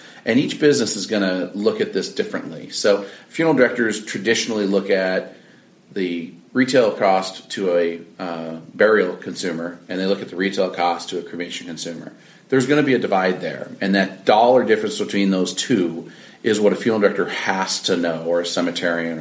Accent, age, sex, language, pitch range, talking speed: American, 40-59, male, English, 85-100 Hz, 185 wpm